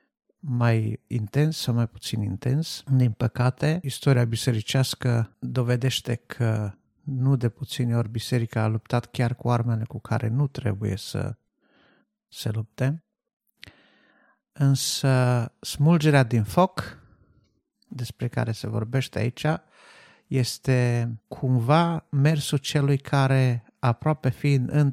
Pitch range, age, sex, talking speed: 120-140 Hz, 50-69, male, 110 wpm